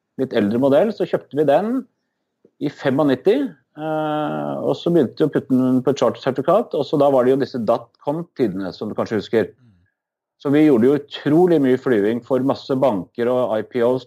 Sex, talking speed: male, 185 wpm